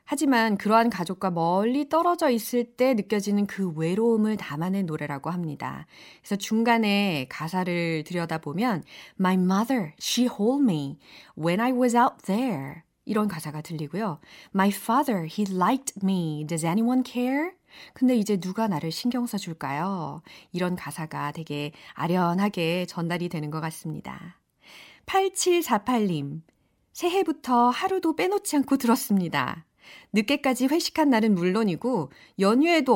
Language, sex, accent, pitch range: Korean, female, native, 180-255 Hz